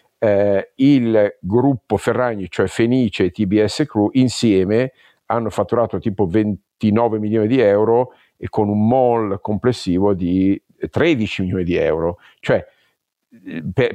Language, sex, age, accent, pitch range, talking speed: Italian, male, 50-69, native, 95-115 Hz, 130 wpm